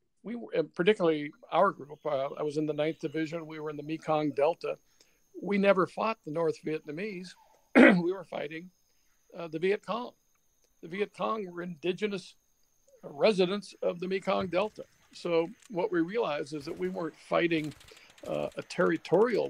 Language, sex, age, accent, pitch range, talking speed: English, male, 60-79, American, 150-190 Hz, 155 wpm